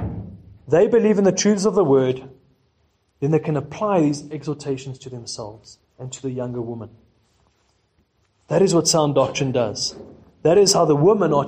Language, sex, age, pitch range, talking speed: English, male, 30-49, 120-155 Hz, 175 wpm